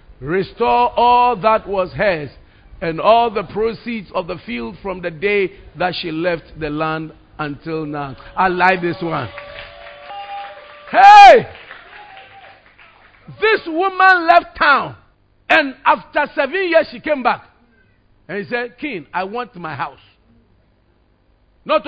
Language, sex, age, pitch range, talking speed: English, male, 50-69, 185-295 Hz, 130 wpm